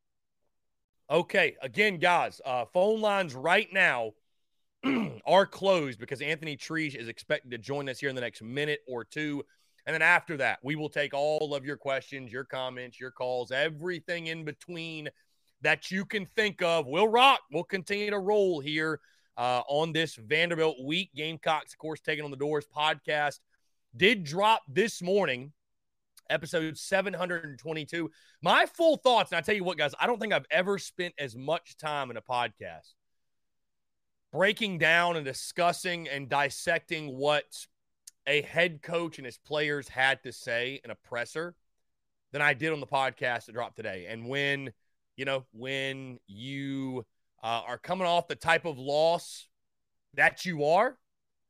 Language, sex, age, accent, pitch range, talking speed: English, male, 30-49, American, 130-175 Hz, 160 wpm